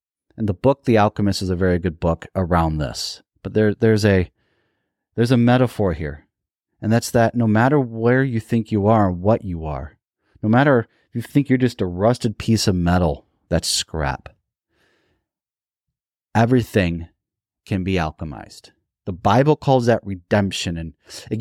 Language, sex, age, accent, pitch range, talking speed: English, male, 30-49, American, 95-120 Hz, 165 wpm